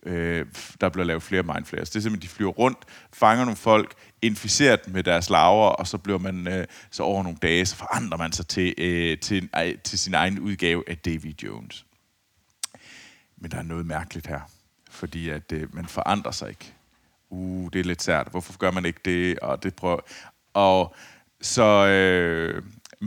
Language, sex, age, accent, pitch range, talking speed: Danish, male, 30-49, native, 90-115 Hz, 175 wpm